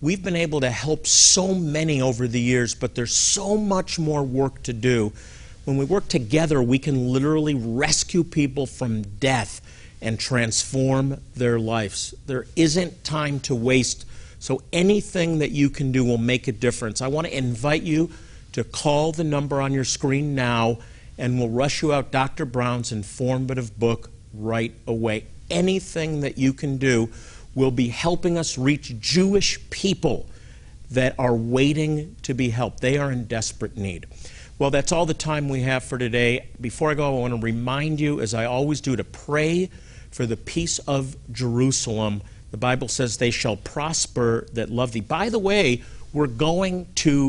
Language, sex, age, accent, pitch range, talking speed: English, male, 50-69, American, 115-150 Hz, 175 wpm